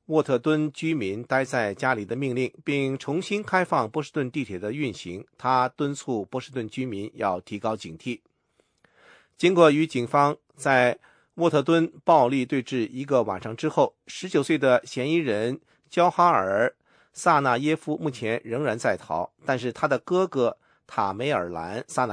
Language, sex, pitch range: English, male, 125-165 Hz